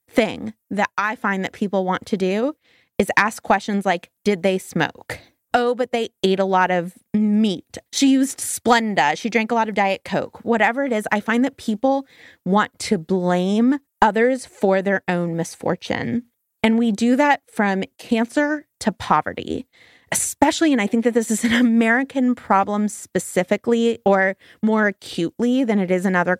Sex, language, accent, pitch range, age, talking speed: female, English, American, 195-255 Hz, 20-39, 175 wpm